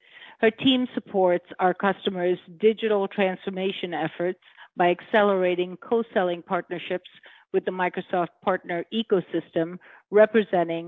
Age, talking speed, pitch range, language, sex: 50-69, 100 wpm, 175-205 Hz, English, female